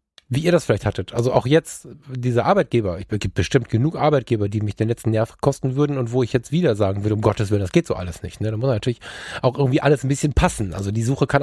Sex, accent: male, German